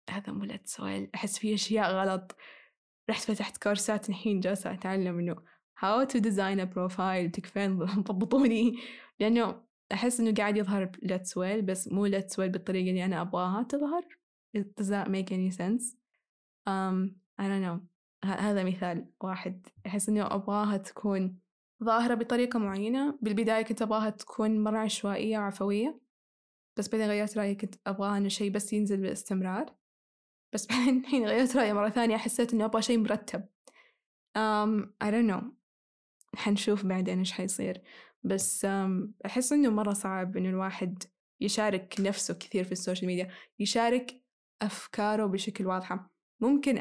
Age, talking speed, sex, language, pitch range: 10-29, 140 wpm, female, Arabic, 190-225 Hz